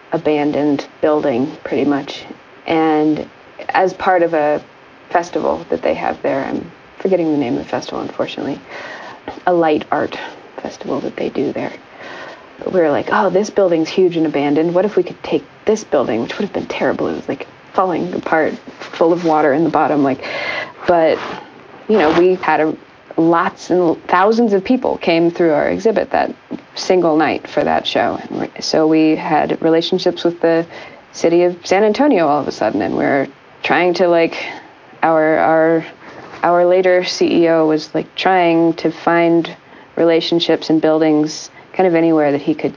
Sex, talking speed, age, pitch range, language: female, 170 wpm, 20-39, 155-175 Hz, English